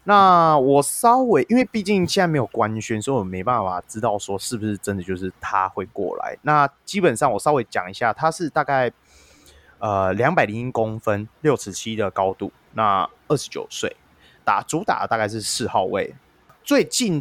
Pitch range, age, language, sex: 100-140 Hz, 20-39, Chinese, male